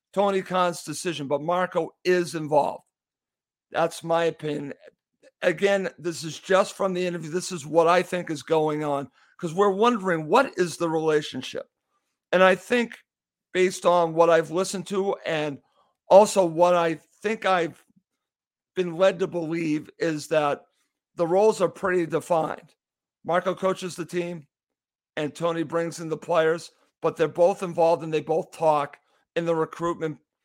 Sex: male